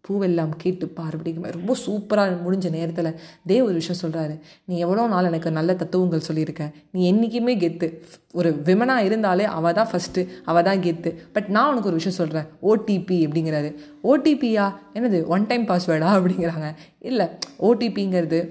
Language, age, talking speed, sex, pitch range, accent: Tamil, 20-39, 150 wpm, female, 165-195 Hz, native